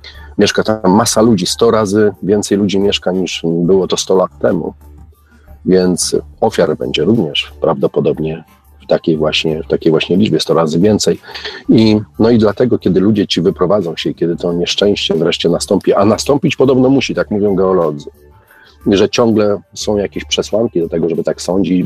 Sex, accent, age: male, native, 40-59